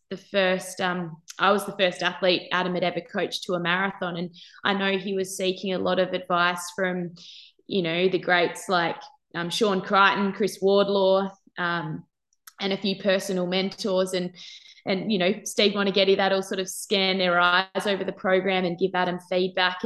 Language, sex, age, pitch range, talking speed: English, female, 20-39, 180-200 Hz, 185 wpm